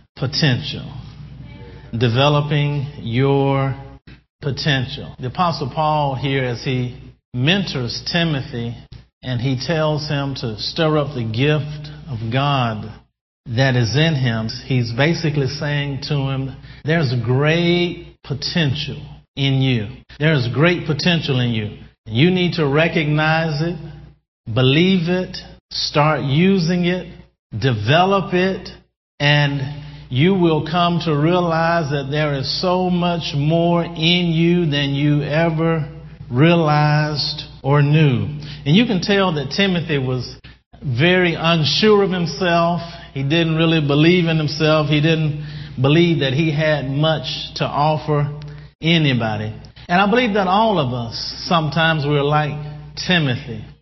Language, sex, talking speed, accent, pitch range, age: English, male, 125 wpm, American, 135-165 Hz, 50-69